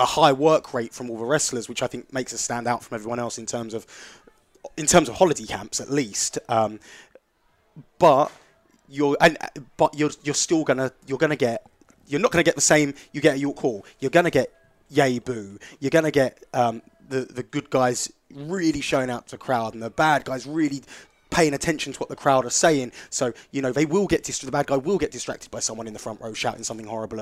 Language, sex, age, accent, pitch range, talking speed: English, male, 20-39, British, 115-145 Hz, 225 wpm